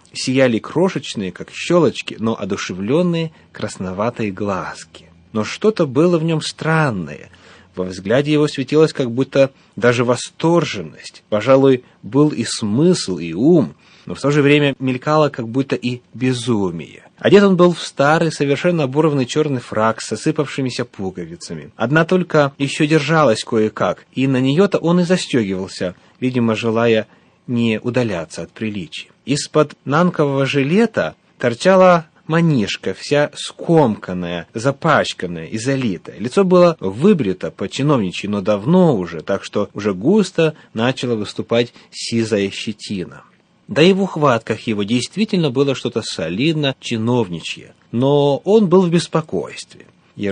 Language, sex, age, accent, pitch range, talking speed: Russian, male, 30-49, native, 110-155 Hz, 130 wpm